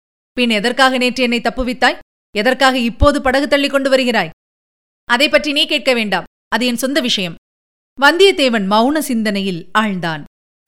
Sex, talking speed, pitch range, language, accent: female, 130 wpm, 215-285 Hz, Tamil, native